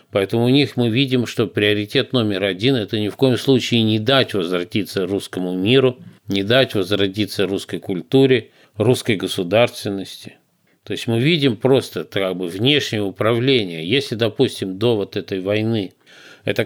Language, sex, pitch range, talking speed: Russian, male, 95-125 Hz, 155 wpm